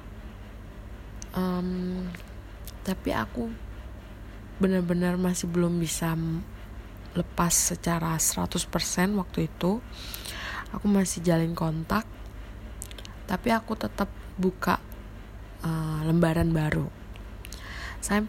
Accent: native